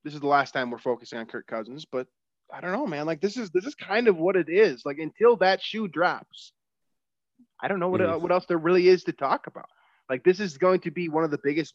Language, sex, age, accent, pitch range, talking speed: English, male, 20-39, American, 135-180 Hz, 265 wpm